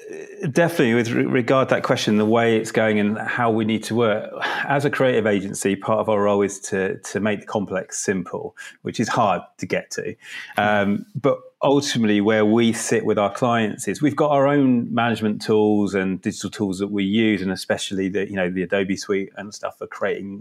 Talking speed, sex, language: 210 wpm, male, English